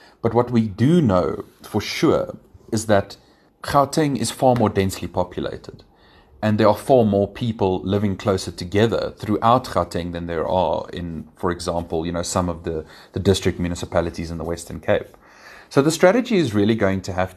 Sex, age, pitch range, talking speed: male, 30-49, 90-115 Hz, 180 wpm